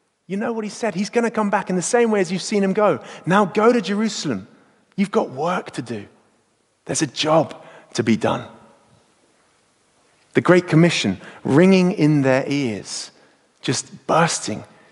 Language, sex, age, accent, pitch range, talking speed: English, male, 30-49, British, 150-215 Hz, 175 wpm